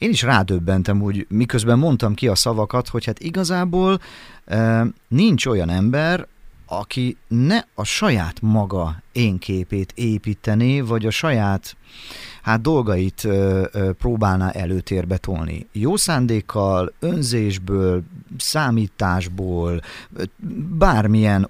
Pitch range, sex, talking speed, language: 95-125 Hz, male, 100 wpm, Hungarian